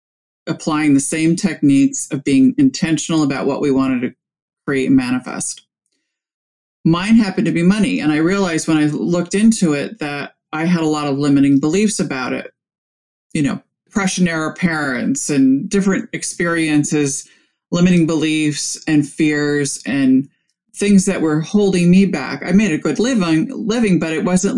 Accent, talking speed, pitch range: American, 160 wpm, 145-195 Hz